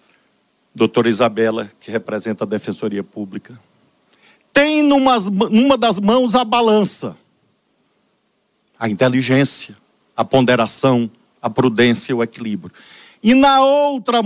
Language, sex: Portuguese, male